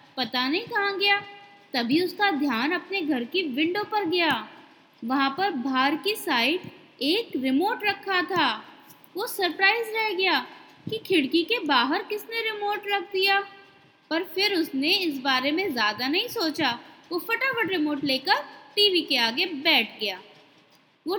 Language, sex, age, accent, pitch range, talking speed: Hindi, female, 20-39, native, 295-400 Hz, 150 wpm